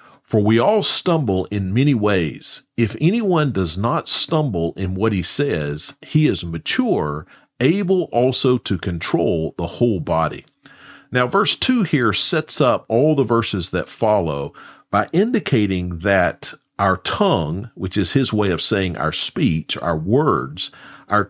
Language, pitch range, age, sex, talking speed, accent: English, 95-145 Hz, 40-59, male, 150 wpm, American